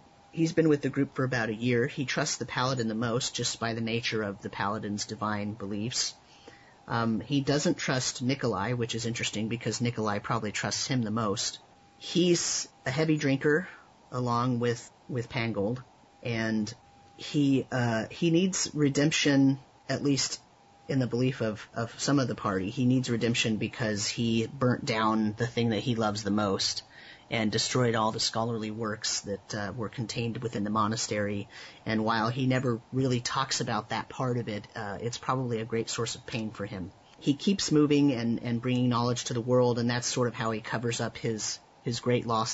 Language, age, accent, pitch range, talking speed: English, 30-49, American, 110-130 Hz, 190 wpm